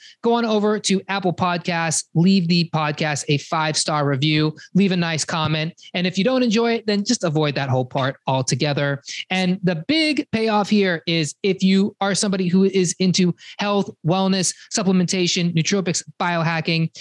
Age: 20-39